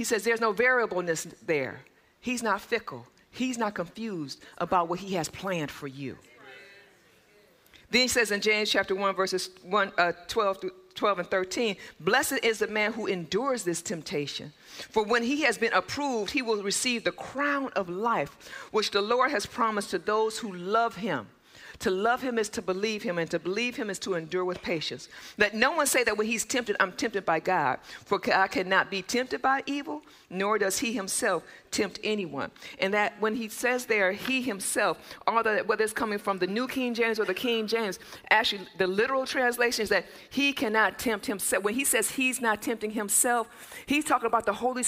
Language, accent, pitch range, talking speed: English, American, 195-245 Hz, 195 wpm